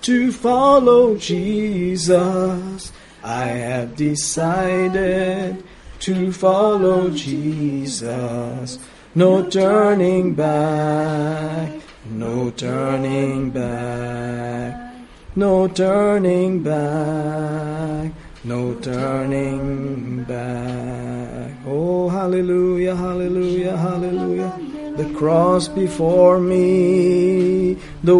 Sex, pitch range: male, 135-185 Hz